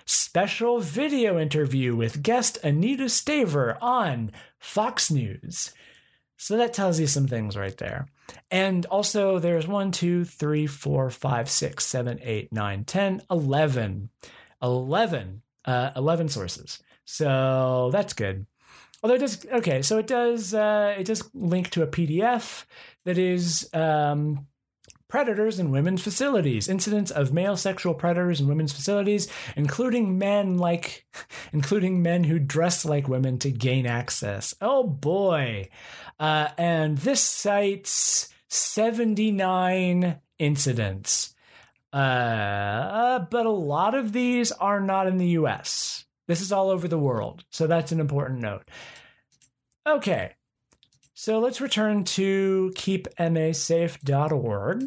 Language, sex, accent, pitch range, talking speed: English, male, American, 135-205 Hz, 135 wpm